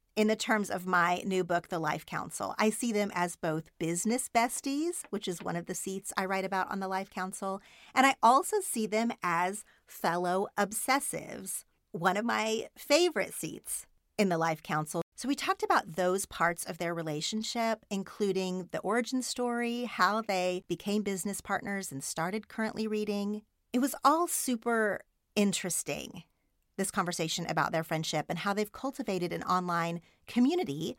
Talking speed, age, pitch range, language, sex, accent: 165 wpm, 40-59, 175-235 Hz, English, female, American